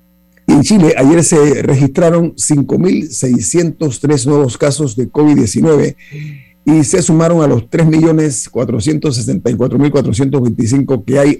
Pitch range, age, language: 125-155 Hz, 50-69, Spanish